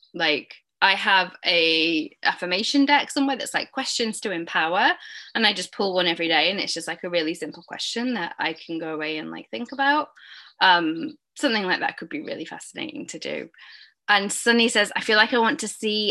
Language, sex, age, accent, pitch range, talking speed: English, female, 10-29, British, 170-220 Hz, 210 wpm